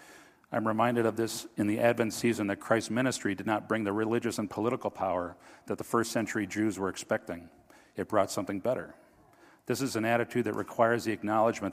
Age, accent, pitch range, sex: 50-69, American, 100-120 Hz, male